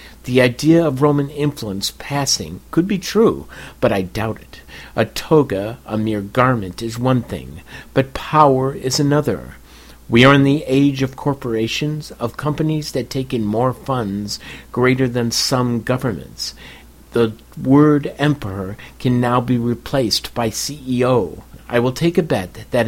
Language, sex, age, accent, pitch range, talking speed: English, male, 50-69, American, 115-145 Hz, 150 wpm